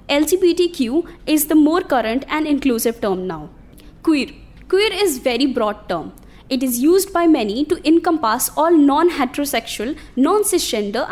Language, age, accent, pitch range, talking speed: English, 20-39, Indian, 255-345 Hz, 140 wpm